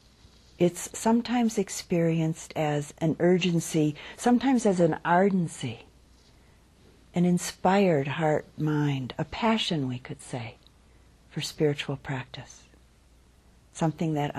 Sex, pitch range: female, 135-175 Hz